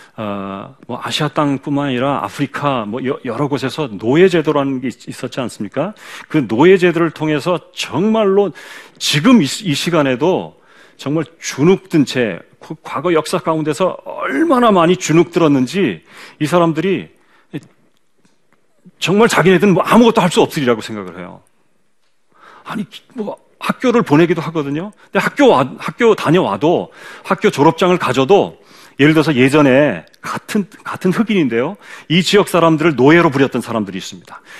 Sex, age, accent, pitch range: male, 40-59, native, 130-180 Hz